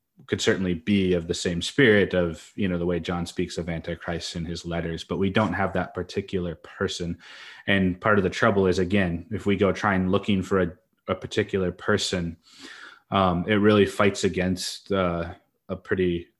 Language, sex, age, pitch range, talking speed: English, male, 30-49, 90-100 Hz, 190 wpm